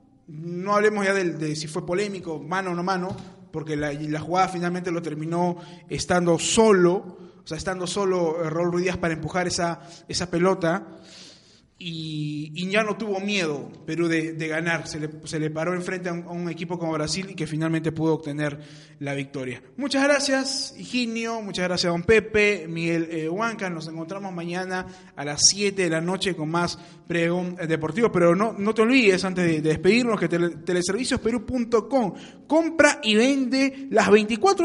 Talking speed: 175 wpm